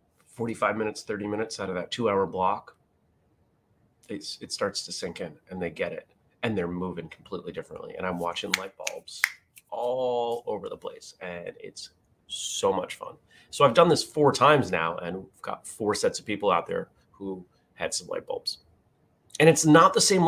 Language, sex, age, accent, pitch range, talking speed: English, male, 30-49, American, 100-155 Hz, 185 wpm